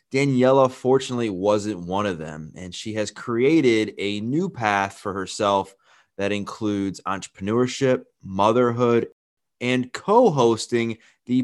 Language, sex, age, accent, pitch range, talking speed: English, male, 20-39, American, 100-130 Hz, 115 wpm